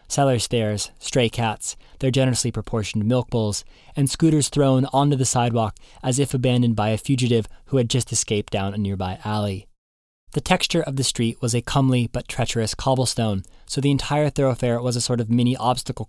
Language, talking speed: English, 185 wpm